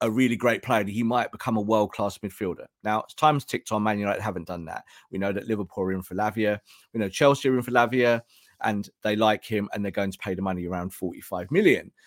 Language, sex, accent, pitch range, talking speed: English, male, British, 110-155 Hz, 240 wpm